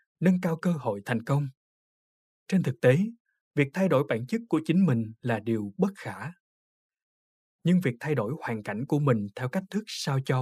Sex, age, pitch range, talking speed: male, 20-39, 130-190 Hz, 195 wpm